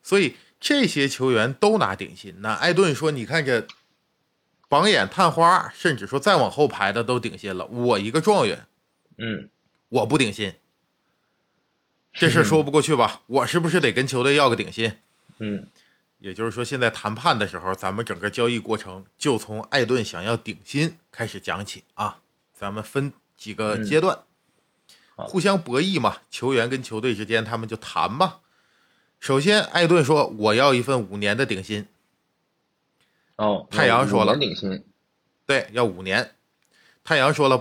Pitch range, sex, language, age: 110-165 Hz, male, Chinese, 20-39